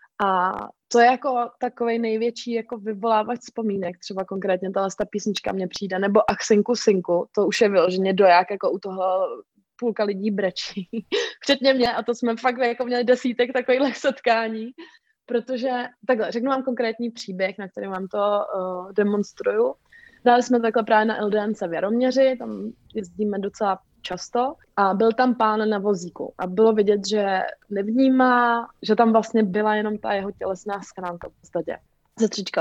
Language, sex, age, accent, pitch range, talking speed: Czech, female, 20-39, native, 200-250 Hz, 165 wpm